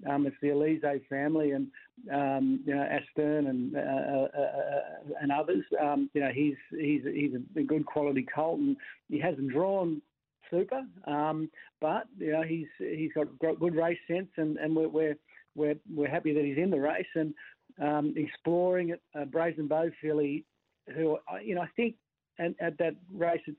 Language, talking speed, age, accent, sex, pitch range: English, 175 wpm, 50-69, Australian, male, 145-165 Hz